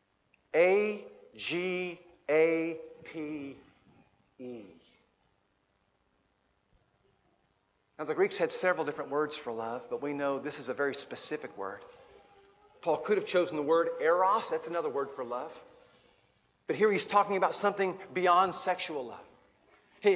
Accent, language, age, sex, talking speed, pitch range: American, English, 50-69, male, 120 wpm, 160-255 Hz